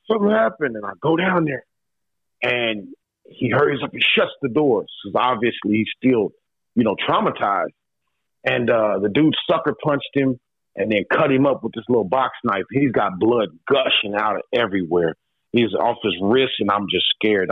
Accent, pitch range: American, 105-130 Hz